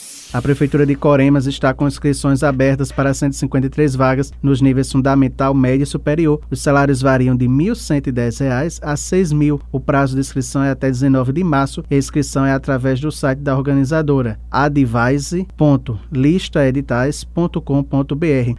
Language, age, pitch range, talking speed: Portuguese, 20-39, 135-150 Hz, 145 wpm